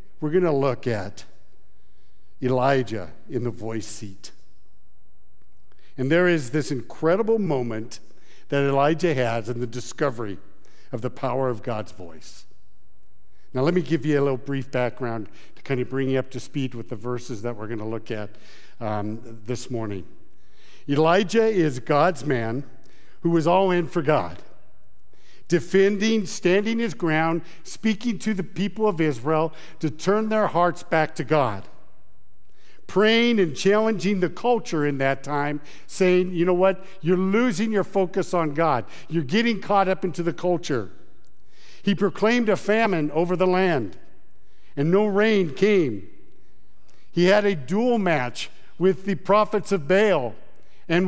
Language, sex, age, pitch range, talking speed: English, male, 60-79, 130-190 Hz, 155 wpm